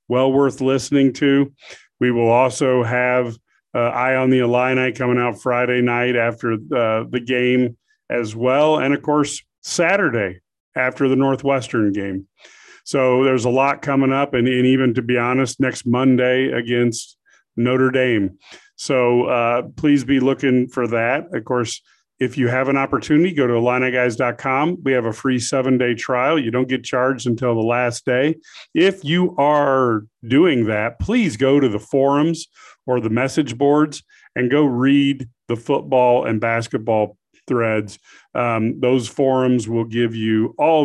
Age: 40-59